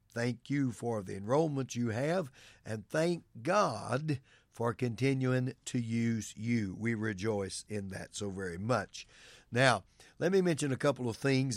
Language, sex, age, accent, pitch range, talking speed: English, male, 60-79, American, 110-135 Hz, 155 wpm